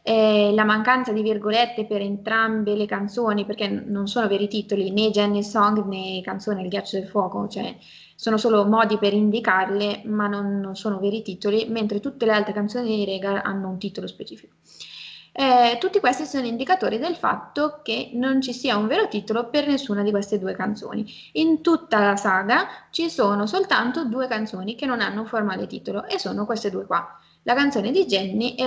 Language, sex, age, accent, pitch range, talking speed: Italian, female, 20-39, native, 205-245 Hz, 195 wpm